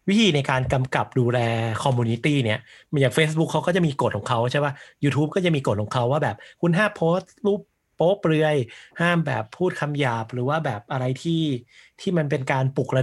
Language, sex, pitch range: Thai, male, 125-155 Hz